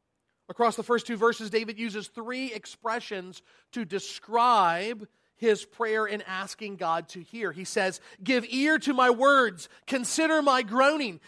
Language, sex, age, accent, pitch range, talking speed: English, male, 40-59, American, 220-260 Hz, 150 wpm